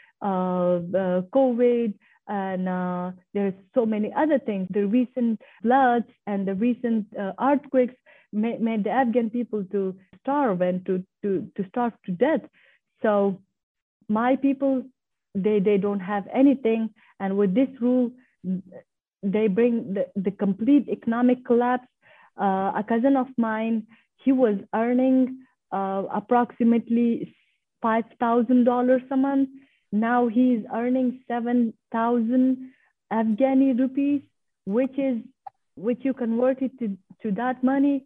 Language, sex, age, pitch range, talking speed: English, female, 30-49, 215-255 Hz, 130 wpm